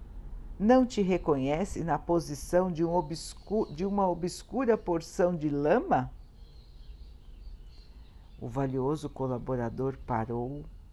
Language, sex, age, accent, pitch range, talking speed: Portuguese, female, 60-79, Brazilian, 135-185 Hz, 90 wpm